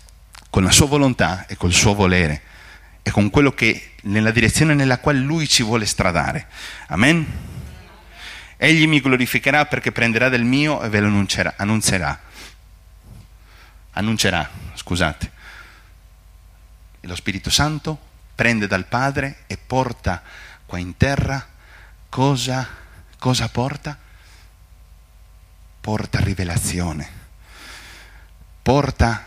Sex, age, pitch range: male, 40-59, 95-150 Hz